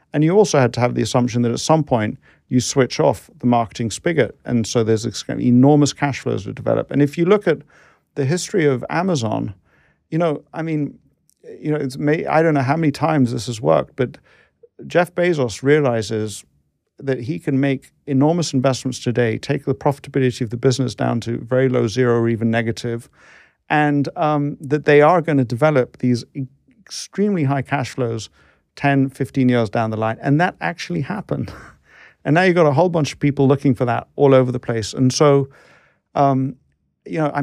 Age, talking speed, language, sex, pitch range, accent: 50-69, 195 wpm, English, male, 120-150 Hz, British